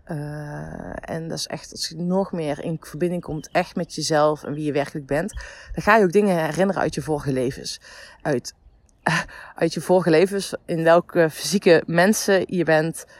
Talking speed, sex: 190 wpm, female